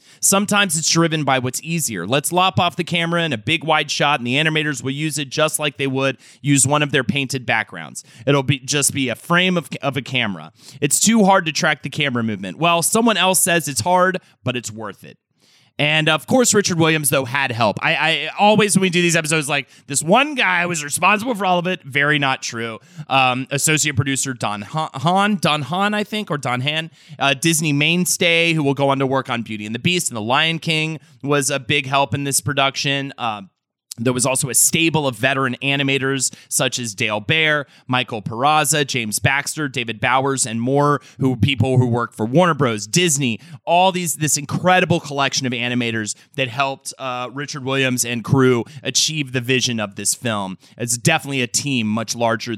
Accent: American